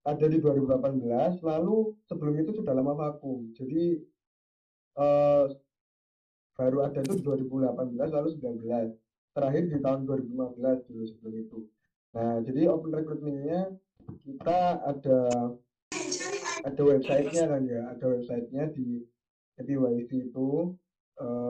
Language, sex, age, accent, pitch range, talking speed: Indonesian, male, 20-39, native, 130-155 Hz, 110 wpm